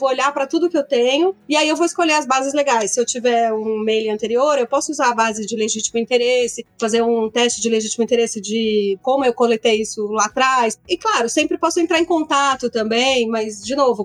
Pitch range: 225-275 Hz